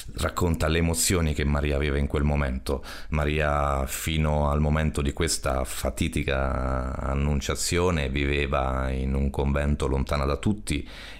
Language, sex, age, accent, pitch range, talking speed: Italian, male, 30-49, native, 70-85 Hz, 130 wpm